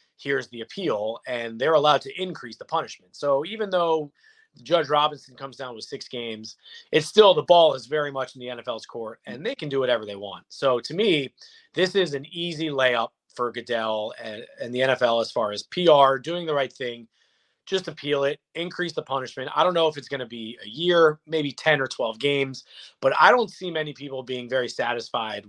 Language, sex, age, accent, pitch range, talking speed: English, male, 30-49, American, 130-160 Hz, 210 wpm